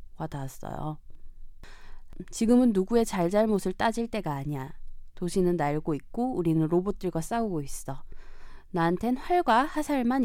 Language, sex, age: Korean, female, 20-39